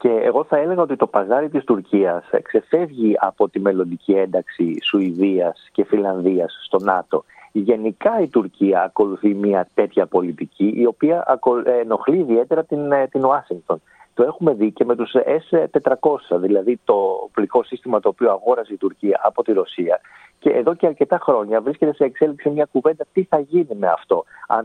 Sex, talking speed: male, 165 wpm